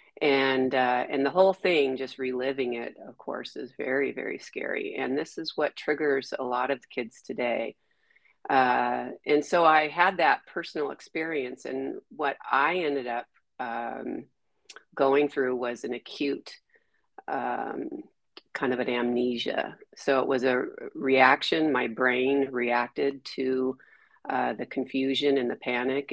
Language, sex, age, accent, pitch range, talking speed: English, female, 40-59, American, 125-140 Hz, 145 wpm